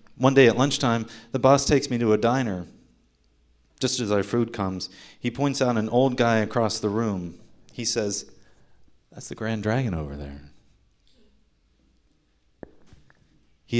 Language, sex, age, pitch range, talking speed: English, male, 40-59, 90-125 Hz, 150 wpm